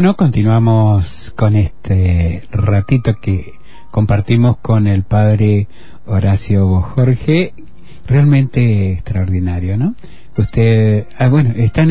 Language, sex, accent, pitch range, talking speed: Spanish, male, Argentinian, 105-135 Hz, 90 wpm